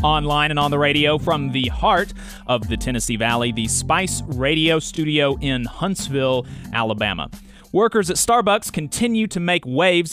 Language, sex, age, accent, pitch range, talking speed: English, male, 30-49, American, 140-185 Hz, 155 wpm